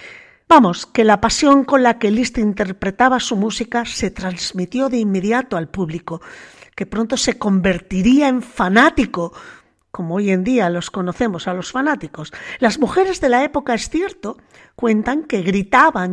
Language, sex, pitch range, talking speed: Spanish, female, 195-265 Hz, 155 wpm